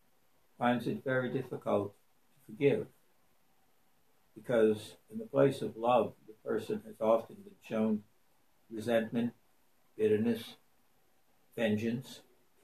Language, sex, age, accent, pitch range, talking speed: English, male, 60-79, American, 110-135 Hz, 100 wpm